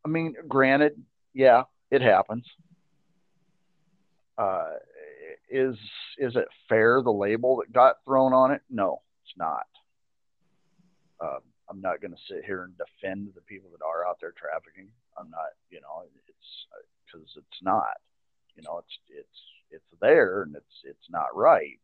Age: 50-69